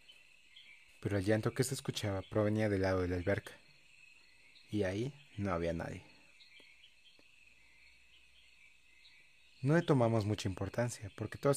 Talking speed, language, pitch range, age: 125 wpm, Spanish, 100-125 Hz, 30-49